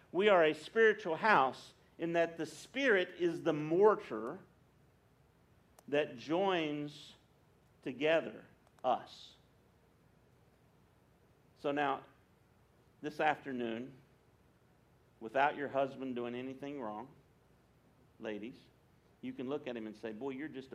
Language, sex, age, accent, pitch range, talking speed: English, male, 50-69, American, 135-180 Hz, 105 wpm